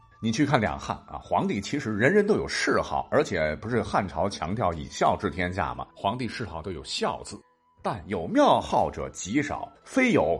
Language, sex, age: Chinese, male, 50-69